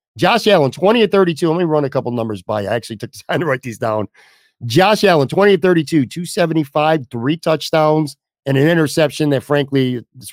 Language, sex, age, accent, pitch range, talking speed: English, male, 50-69, American, 120-155 Hz, 205 wpm